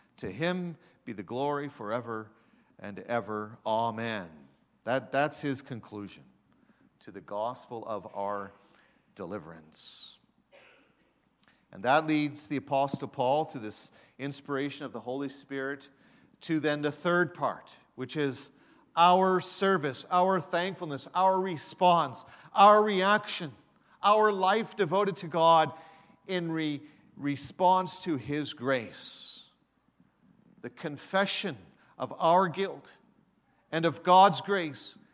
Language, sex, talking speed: English, male, 115 wpm